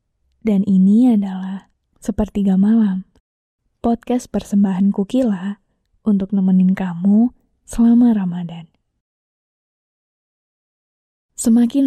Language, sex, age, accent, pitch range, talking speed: Indonesian, female, 20-39, native, 195-230 Hz, 70 wpm